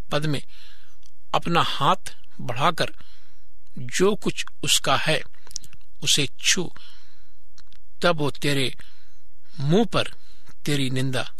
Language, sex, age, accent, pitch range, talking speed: Hindi, male, 60-79, native, 140-170 Hz, 90 wpm